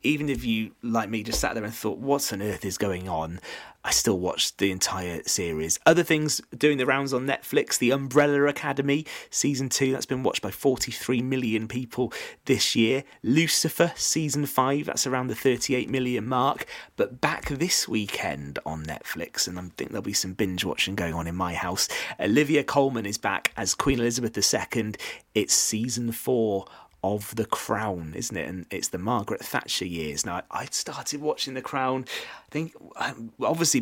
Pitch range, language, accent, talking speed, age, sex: 95-140 Hz, English, British, 180 wpm, 30-49, male